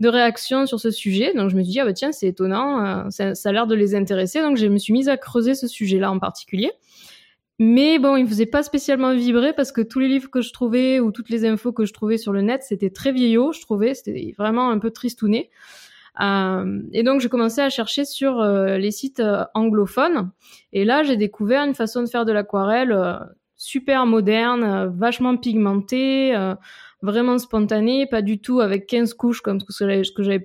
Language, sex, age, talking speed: French, female, 20-39, 225 wpm